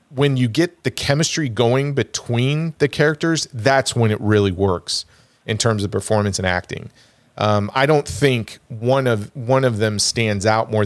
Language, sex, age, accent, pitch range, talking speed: English, male, 40-59, American, 105-130 Hz, 175 wpm